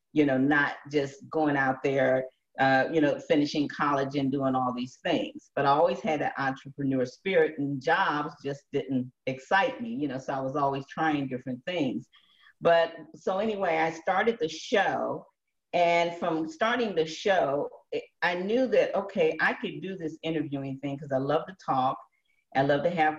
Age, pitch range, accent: 40-59, 135-185 Hz, American